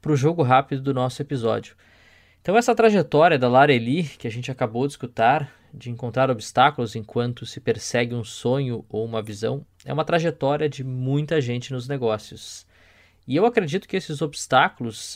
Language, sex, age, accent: Portuguese, male, 20-39, Brazilian